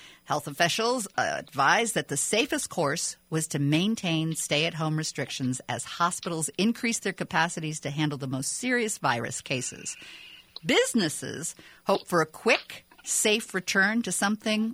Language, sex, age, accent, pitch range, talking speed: English, female, 50-69, American, 145-210 Hz, 135 wpm